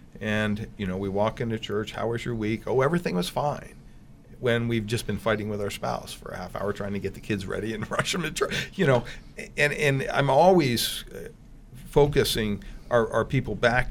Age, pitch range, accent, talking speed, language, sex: 50-69, 105-130 Hz, American, 210 wpm, English, male